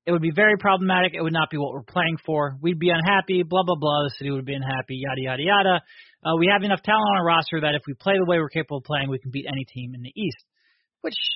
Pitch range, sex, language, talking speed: 150-185 Hz, male, English, 285 wpm